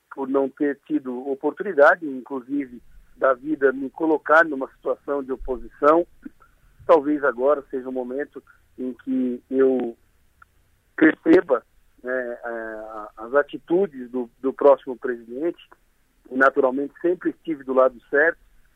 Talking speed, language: 115 wpm, Portuguese